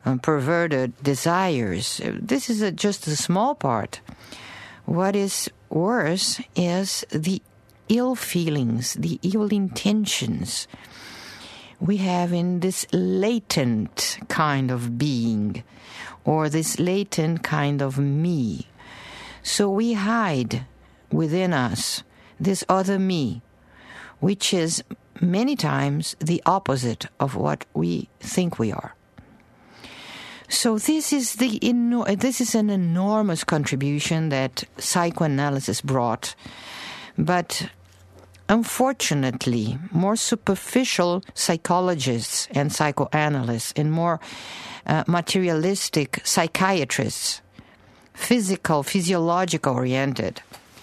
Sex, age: female, 50-69